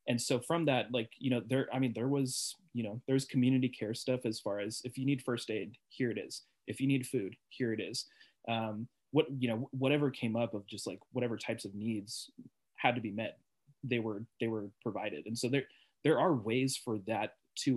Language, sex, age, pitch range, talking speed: English, male, 20-39, 105-130 Hz, 230 wpm